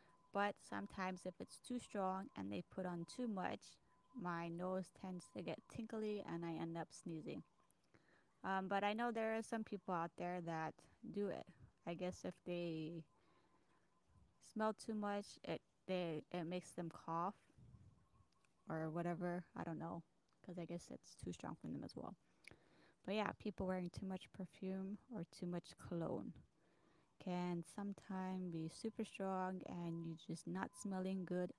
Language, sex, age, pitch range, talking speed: English, female, 20-39, 170-205 Hz, 160 wpm